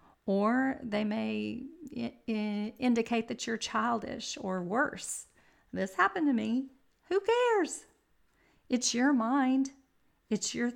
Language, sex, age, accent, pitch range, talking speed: English, female, 40-59, American, 205-260 Hz, 110 wpm